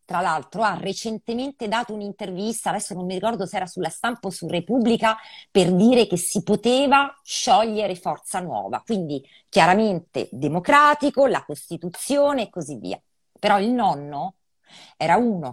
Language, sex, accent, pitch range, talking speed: Italian, female, native, 165-235 Hz, 145 wpm